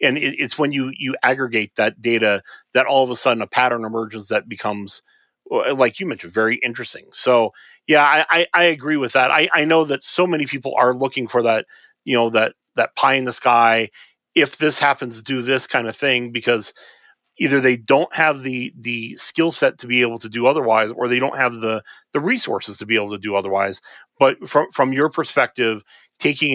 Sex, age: male, 30-49